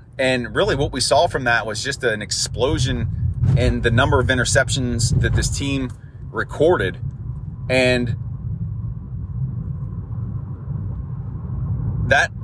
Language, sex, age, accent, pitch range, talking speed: English, male, 30-49, American, 115-130 Hz, 105 wpm